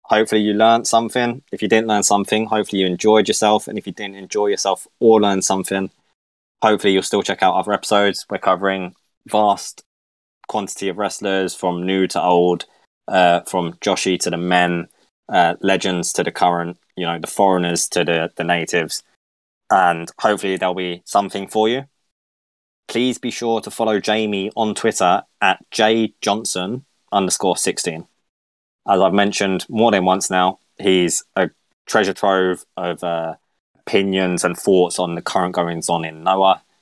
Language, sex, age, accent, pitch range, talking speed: English, male, 20-39, British, 85-105 Hz, 160 wpm